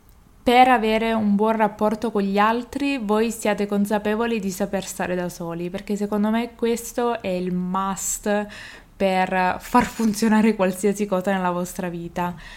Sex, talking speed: female, 150 wpm